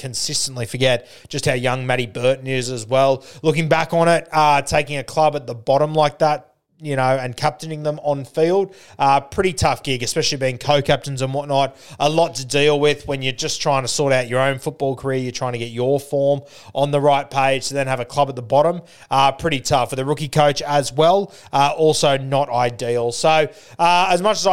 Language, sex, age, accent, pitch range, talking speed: English, male, 20-39, Australian, 130-155 Hz, 225 wpm